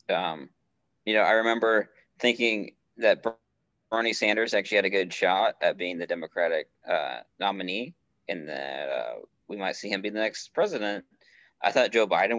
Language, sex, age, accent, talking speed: English, male, 20-39, American, 170 wpm